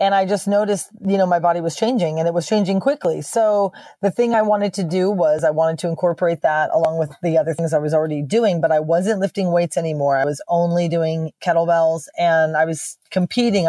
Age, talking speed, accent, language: 30-49, 230 wpm, American, English